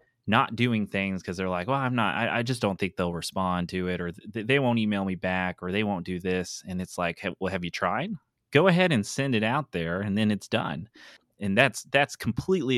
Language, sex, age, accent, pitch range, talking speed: English, male, 30-49, American, 90-110 Hz, 250 wpm